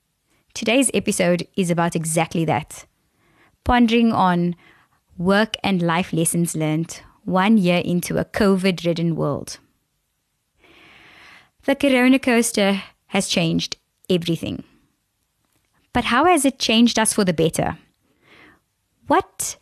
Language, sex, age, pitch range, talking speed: English, female, 20-39, 170-230 Hz, 105 wpm